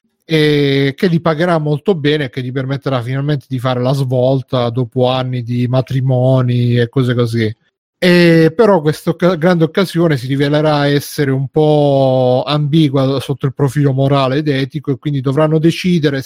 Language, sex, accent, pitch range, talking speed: Italian, male, native, 125-155 Hz, 160 wpm